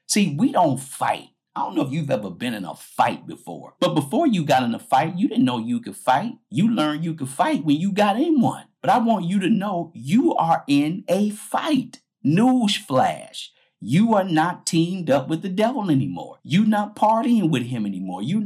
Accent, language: American, English